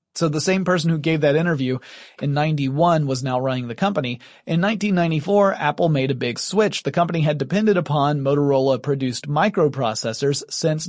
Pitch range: 135-170 Hz